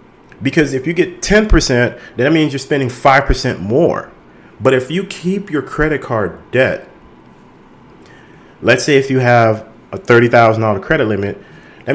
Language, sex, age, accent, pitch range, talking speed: English, male, 40-59, American, 115-150 Hz, 145 wpm